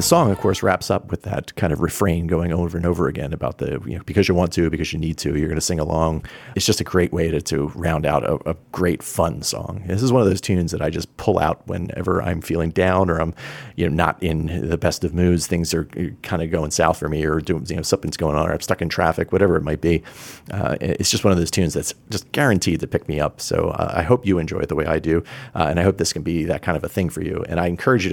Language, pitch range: English, 80-95 Hz